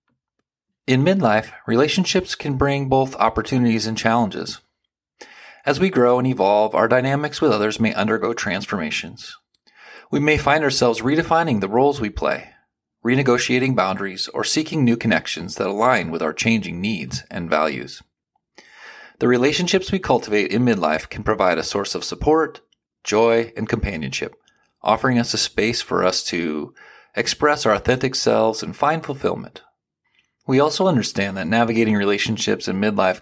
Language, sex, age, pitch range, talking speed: English, male, 30-49, 115-145 Hz, 145 wpm